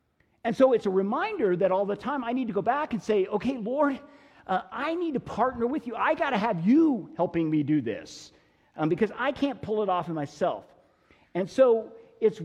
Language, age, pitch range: English, 50-69, 165-235 Hz